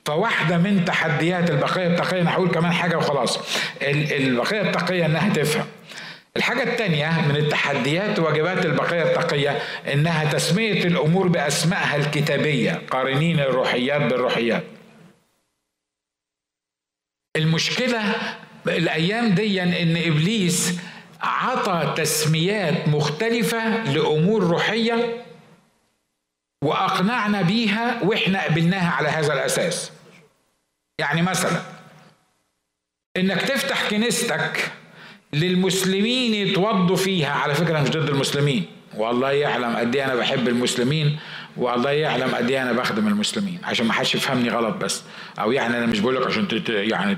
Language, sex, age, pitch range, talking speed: Arabic, male, 50-69, 145-200 Hz, 110 wpm